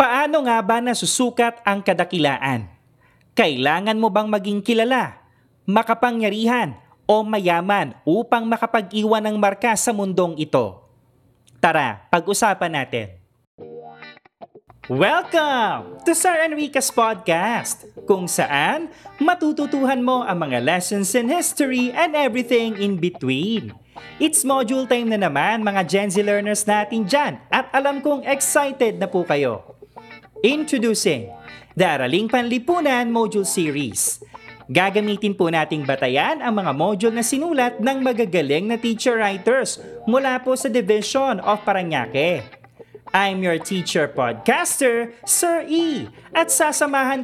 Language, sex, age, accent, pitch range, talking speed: Filipino, male, 30-49, native, 175-255 Hz, 120 wpm